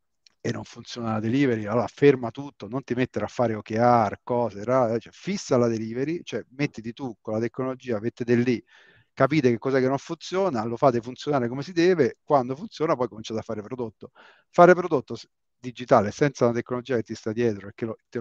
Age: 40-59